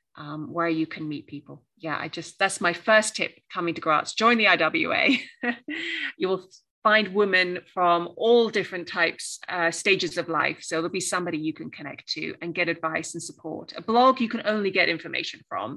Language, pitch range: English, 165-210 Hz